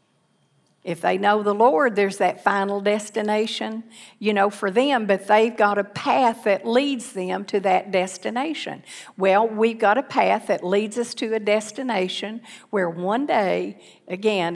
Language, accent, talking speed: English, American, 160 wpm